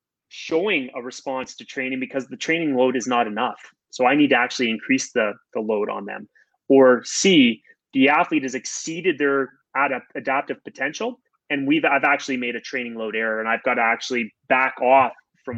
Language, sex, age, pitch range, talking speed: English, male, 20-39, 125-160 Hz, 190 wpm